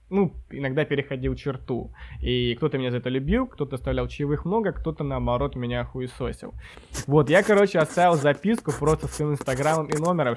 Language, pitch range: Russian, 125-155 Hz